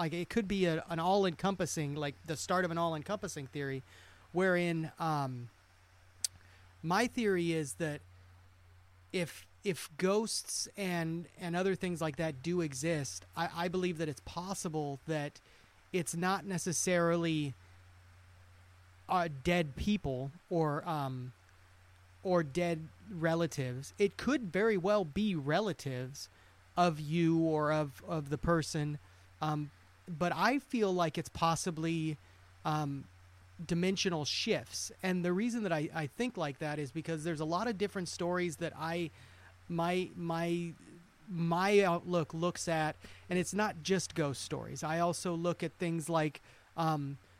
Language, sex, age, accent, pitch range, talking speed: English, male, 30-49, American, 140-180 Hz, 140 wpm